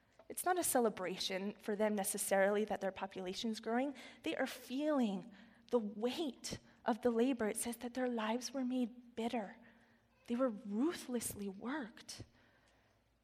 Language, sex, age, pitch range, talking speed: English, female, 20-39, 215-260 Hz, 145 wpm